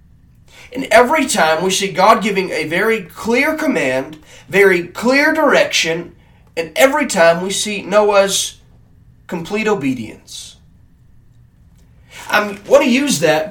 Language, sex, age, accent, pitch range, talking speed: English, male, 30-49, American, 165-235 Hz, 120 wpm